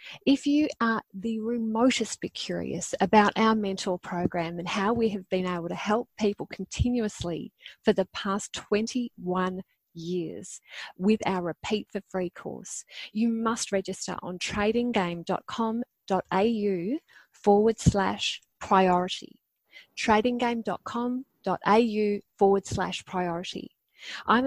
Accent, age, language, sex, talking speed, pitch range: Australian, 30-49, English, female, 110 wpm, 190-225 Hz